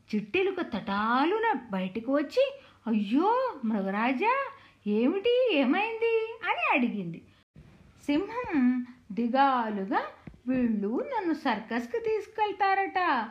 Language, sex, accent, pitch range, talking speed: Telugu, female, native, 230-345 Hz, 70 wpm